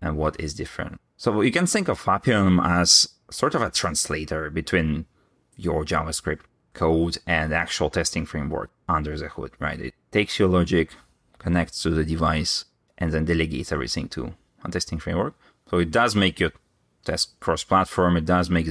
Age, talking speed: 30-49, 170 wpm